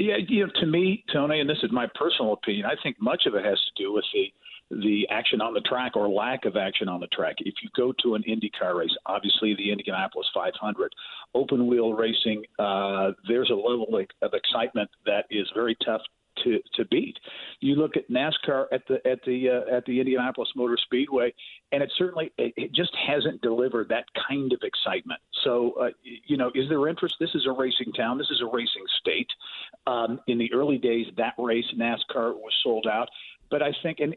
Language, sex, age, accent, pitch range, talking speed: English, male, 50-69, American, 115-160 Hz, 210 wpm